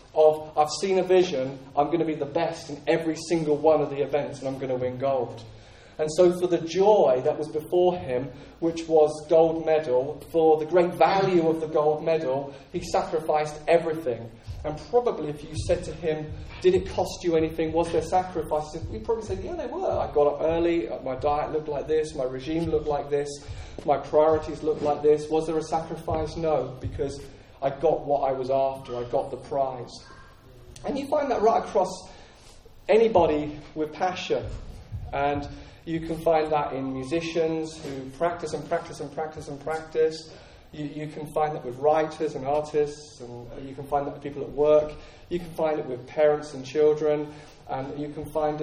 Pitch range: 140-160 Hz